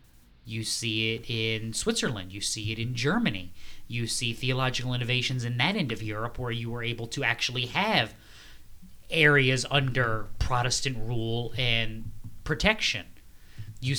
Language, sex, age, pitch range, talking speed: English, male, 20-39, 115-150 Hz, 140 wpm